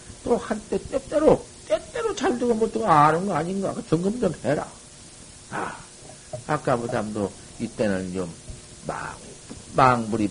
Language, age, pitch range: Korean, 50-69, 115-165 Hz